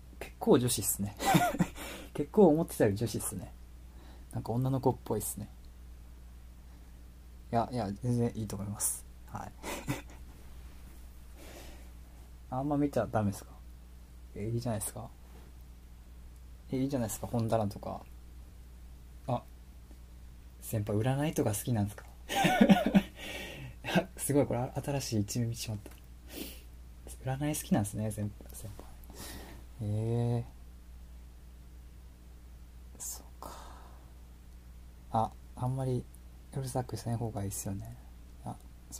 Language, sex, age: Japanese, male, 20-39